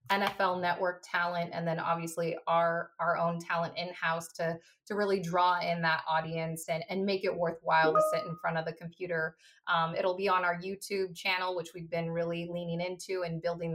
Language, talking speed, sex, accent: English, 200 wpm, female, American